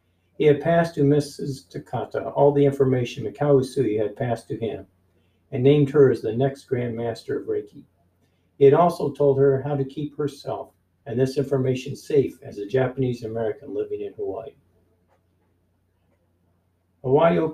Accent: American